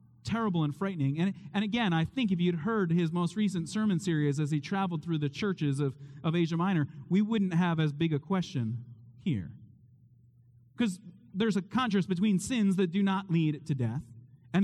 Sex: male